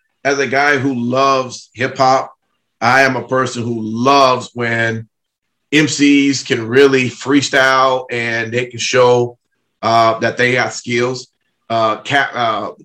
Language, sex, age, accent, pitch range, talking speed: English, male, 30-49, American, 125-155 Hz, 130 wpm